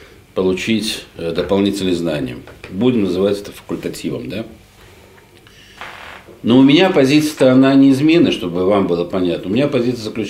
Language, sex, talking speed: Russian, male, 120 wpm